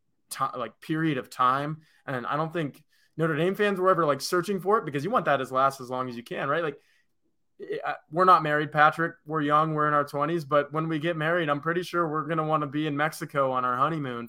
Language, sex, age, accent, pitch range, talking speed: English, male, 20-39, American, 125-155 Hz, 250 wpm